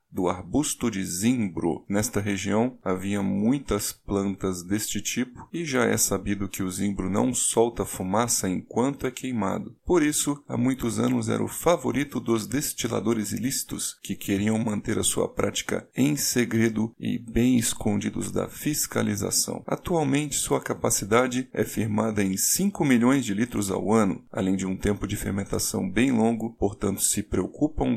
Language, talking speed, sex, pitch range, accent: Portuguese, 150 wpm, male, 105-140 Hz, Brazilian